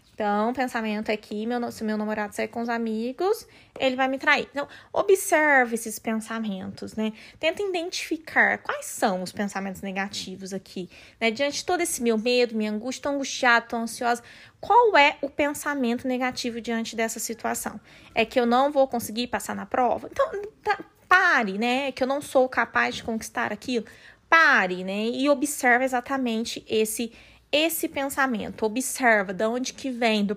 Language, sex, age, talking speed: Portuguese, female, 20-39, 165 wpm